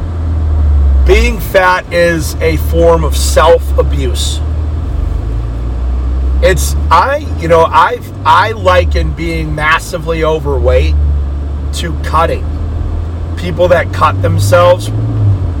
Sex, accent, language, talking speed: male, American, English, 90 wpm